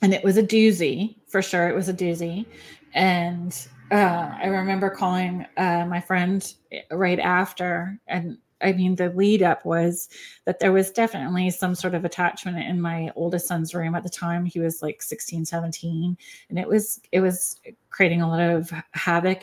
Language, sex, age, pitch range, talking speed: English, female, 30-49, 170-185 Hz, 180 wpm